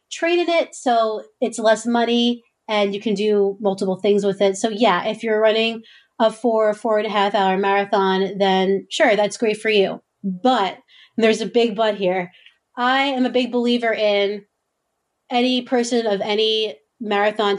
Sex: female